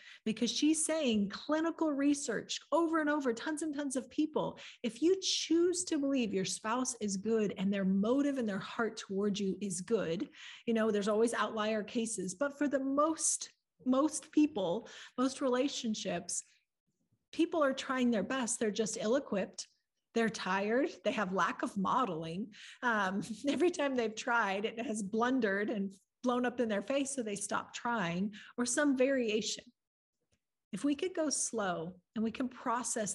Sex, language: female, English